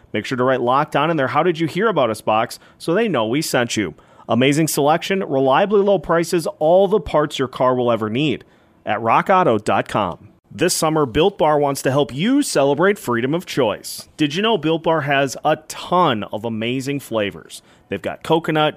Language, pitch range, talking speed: English, 125-165 Hz, 195 wpm